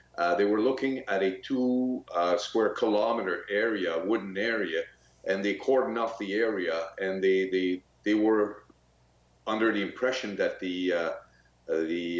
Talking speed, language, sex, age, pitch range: 150 wpm, English, male, 50-69, 90-115 Hz